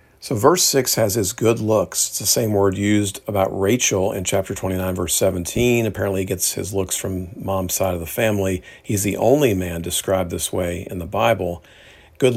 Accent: American